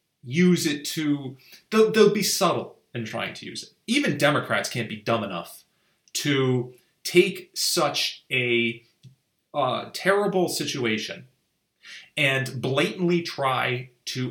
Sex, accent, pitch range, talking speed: male, American, 115-175 Hz, 120 wpm